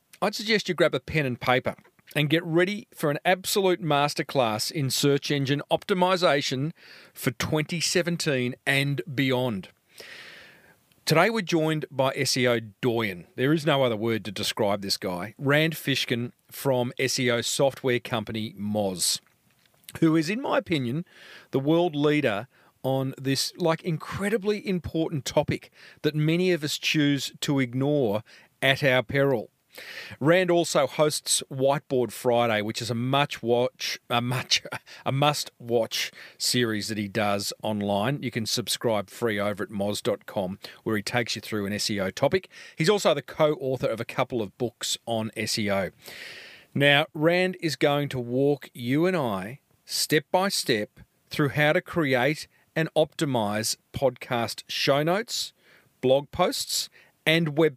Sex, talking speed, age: male, 140 wpm, 40-59